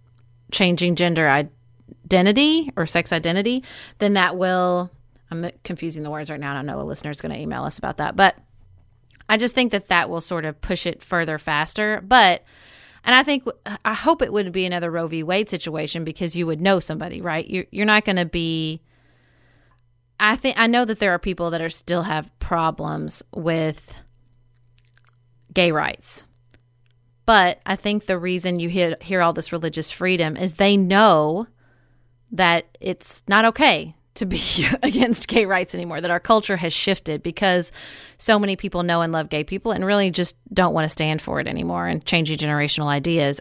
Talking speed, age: 185 wpm, 30-49